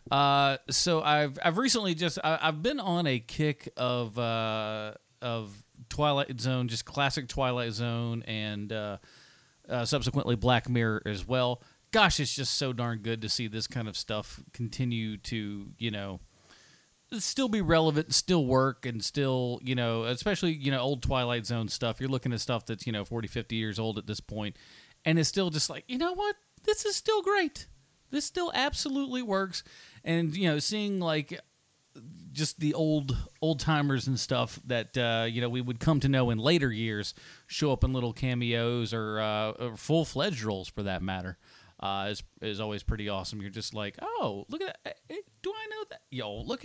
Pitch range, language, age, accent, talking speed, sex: 115-160 Hz, English, 40-59, American, 190 wpm, male